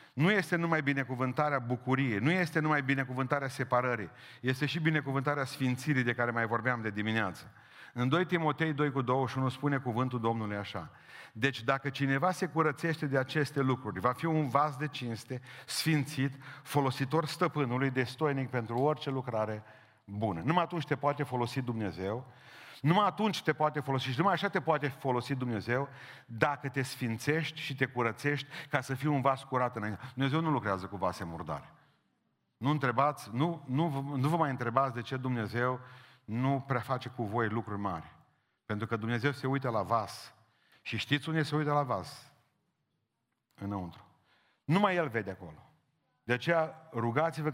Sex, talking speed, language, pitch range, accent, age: male, 160 wpm, Romanian, 120-150 Hz, native, 40-59